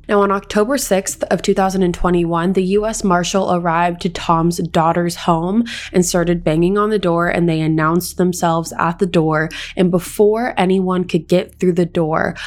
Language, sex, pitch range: English, female, 170-190 Hz